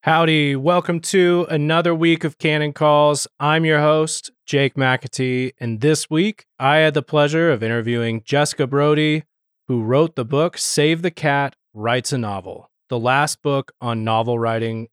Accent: American